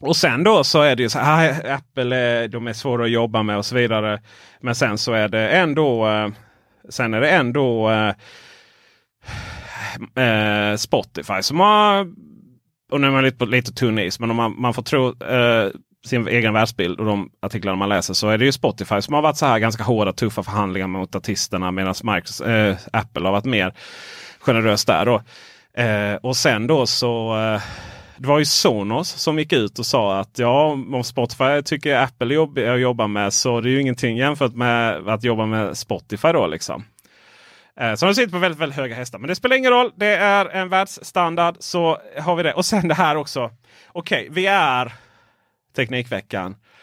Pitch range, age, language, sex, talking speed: 110-150 Hz, 30-49, Swedish, male, 190 wpm